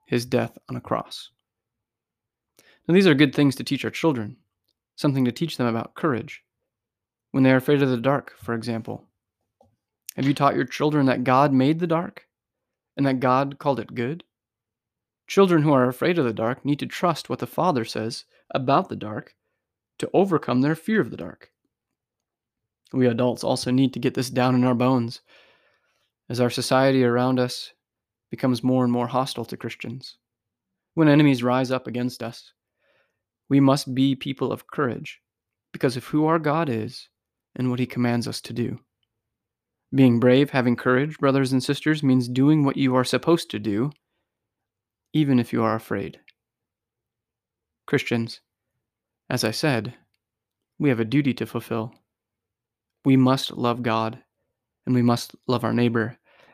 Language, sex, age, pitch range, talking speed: English, male, 20-39, 115-140 Hz, 165 wpm